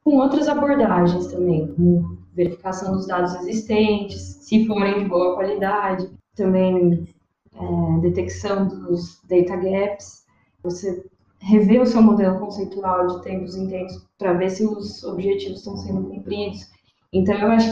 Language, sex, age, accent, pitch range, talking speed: Portuguese, female, 10-29, Brazilian, 175-210 Hz, 140 wpm